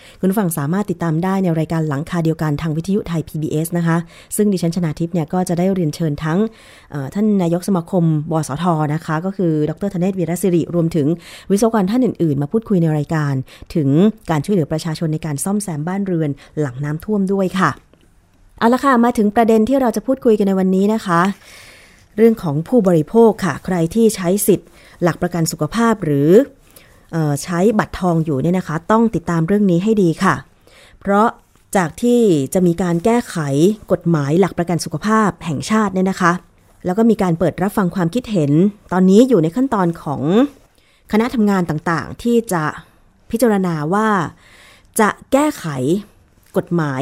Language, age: Thai, 20-39